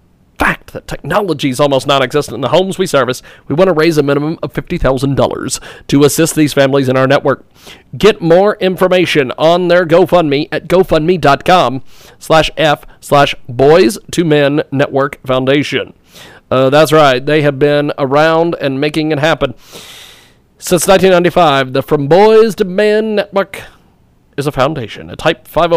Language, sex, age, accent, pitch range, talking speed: English, male, 40-59, American, 145-185 Hz, 155 wpm